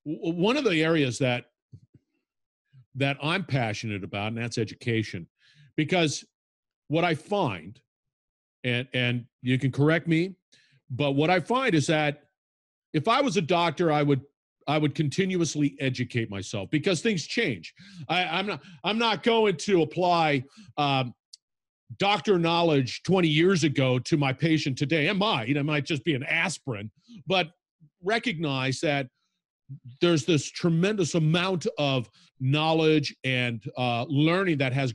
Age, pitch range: 50-69, 135-185 Hz